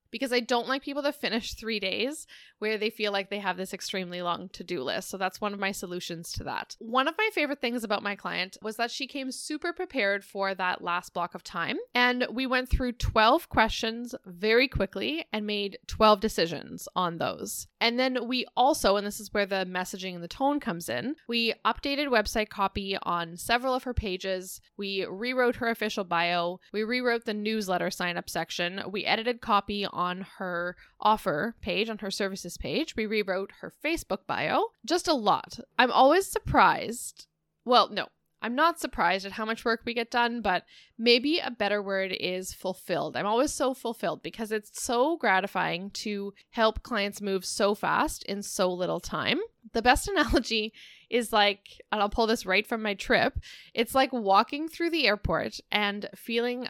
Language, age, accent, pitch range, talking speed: English, 10-29, American, 195-250 Hz, 190 wpm